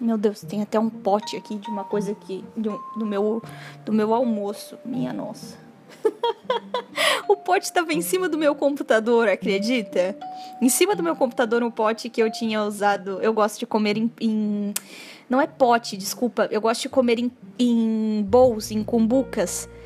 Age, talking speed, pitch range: 10-29, 180 wpm, 215-265 Hz